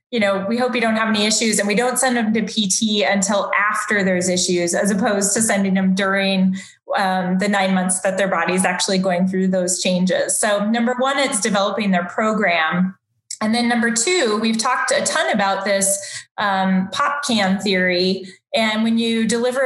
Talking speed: 190 wpm